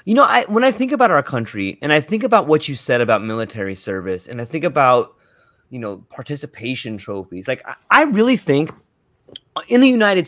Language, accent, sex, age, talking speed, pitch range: English, American, male, 30-49, 200 wpm, 130-215 Hz